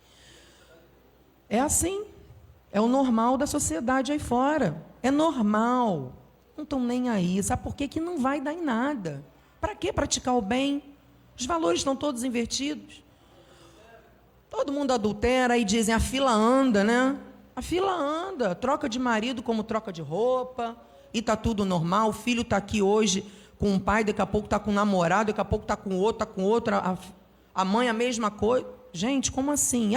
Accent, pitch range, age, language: Brazilian, 195-270 Hz, 40-59, Portuguese